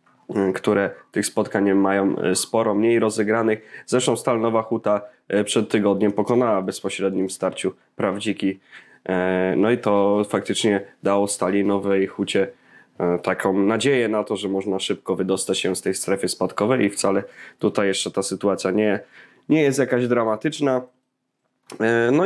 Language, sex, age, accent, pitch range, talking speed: Polish, male, 20-39, native, 105-125 Hz, 130 wpm